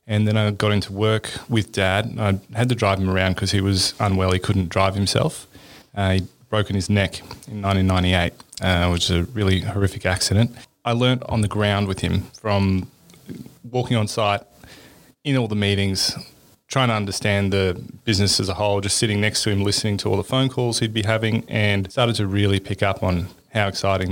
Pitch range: 100-125 Hz